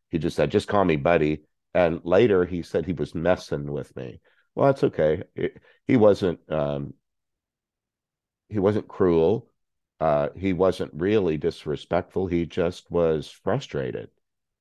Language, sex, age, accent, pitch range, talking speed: English, male, 50-69, American, 80-90 Hz, 140 wpm